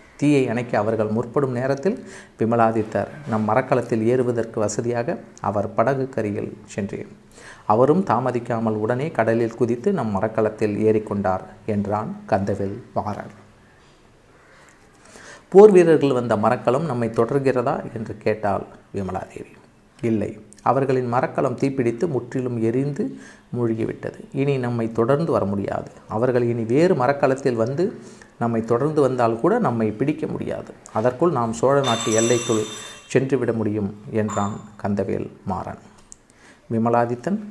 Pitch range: 110-135 Hz